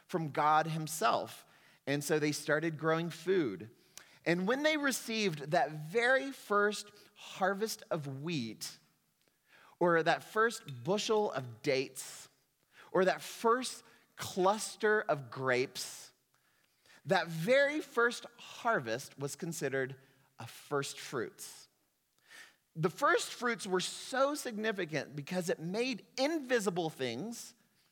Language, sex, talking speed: English, male, 110 wpm